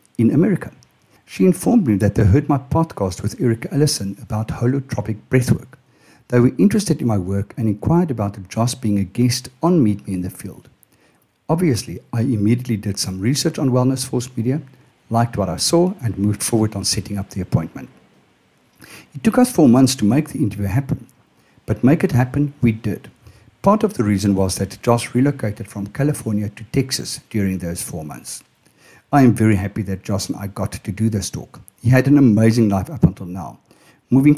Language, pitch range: English, 100-135 Hz